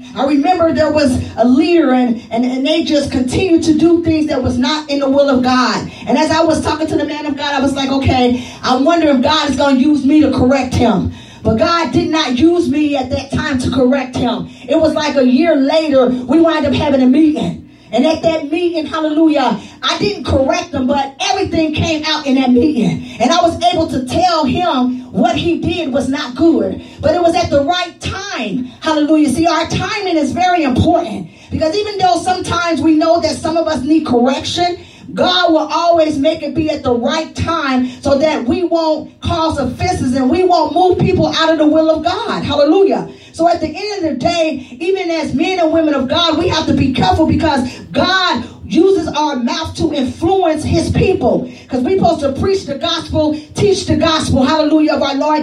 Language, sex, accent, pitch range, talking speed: English, female, American, 275-330 Hz, 215 wpm